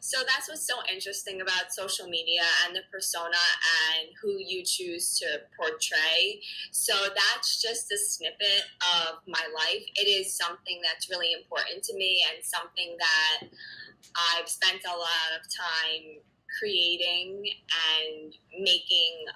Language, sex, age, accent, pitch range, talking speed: English, female, 20-39, American, 170-235 Hz, 140 wpm